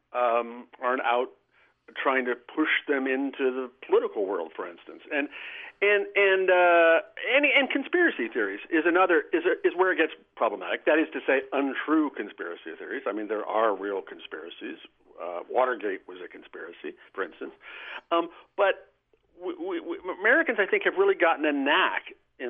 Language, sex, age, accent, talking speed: English, male, 60-79, American, 170 wpm